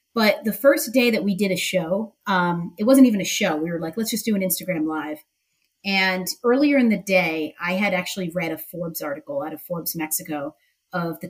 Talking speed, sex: 225 wpm, female